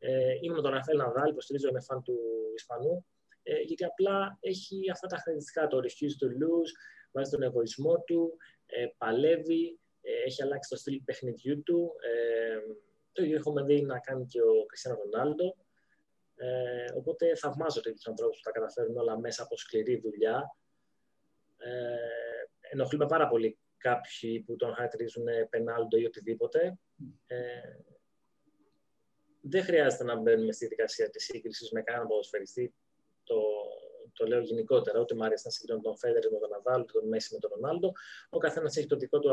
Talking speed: 160 wpm